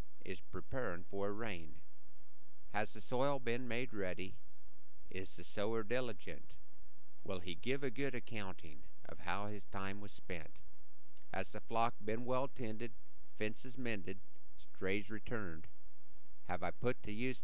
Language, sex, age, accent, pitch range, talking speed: English, male, 50-69, American, 90-115 Hz, 145 wpm